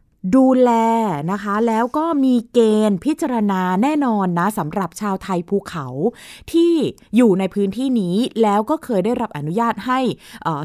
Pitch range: 175-235 Hz